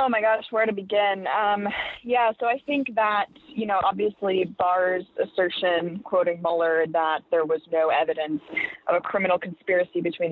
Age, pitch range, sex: 20-39, 155-190 Hz, female